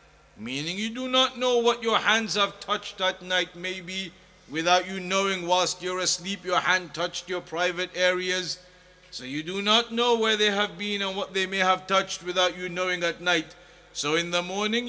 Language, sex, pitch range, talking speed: English, male, 175-220 Hz, 200 wpm